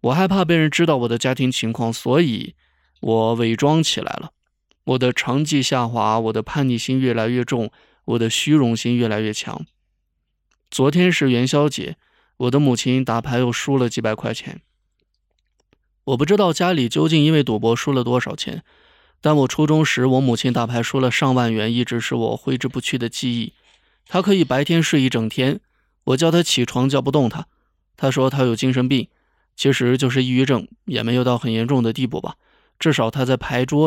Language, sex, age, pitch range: Chinese, male, 20-39, 120-140 Hz